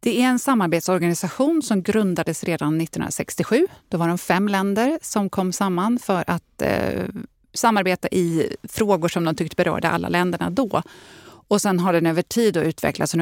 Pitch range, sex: 165-205 Hz, female